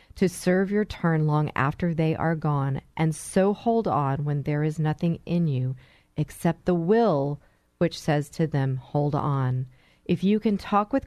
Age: 40-59